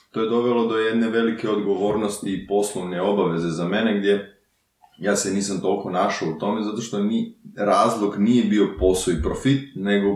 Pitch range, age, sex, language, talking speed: 85-115 Hz, 20-39, male, Croatian, 185 wpm